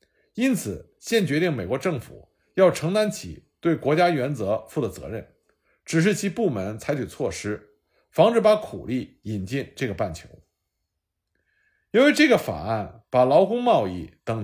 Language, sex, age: Chinese, male, 50-69